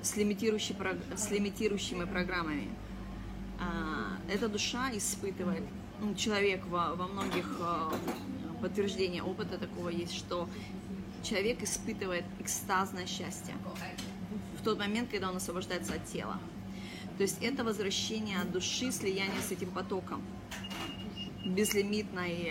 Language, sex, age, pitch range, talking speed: Russian, female, 30-49, 185-215 Hz, 105 wpm